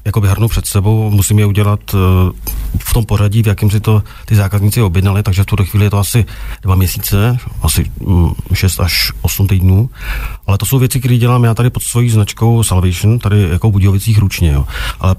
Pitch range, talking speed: 95-110 Hz, 195 wpm